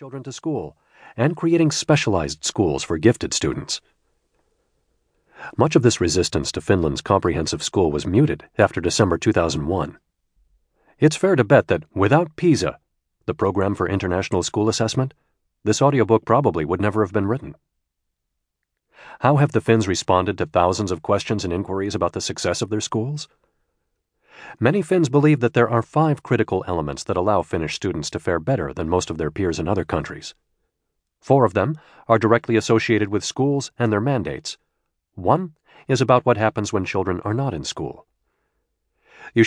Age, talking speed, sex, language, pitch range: 40-59, 165 wpm, male, English, 90-130 Hz